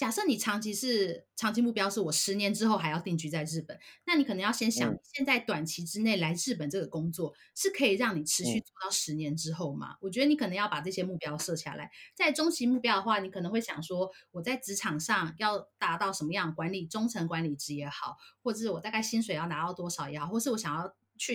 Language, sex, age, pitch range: Chinese, female, 30-49, 165-235 Hz